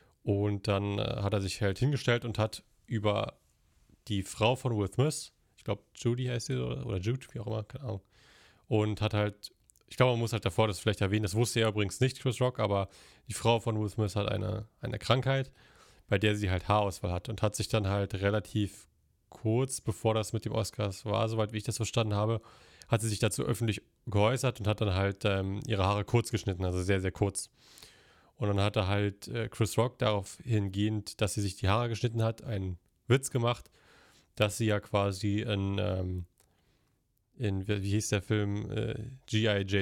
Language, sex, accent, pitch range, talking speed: German, male, German, 100-115 Hz, 195 wpm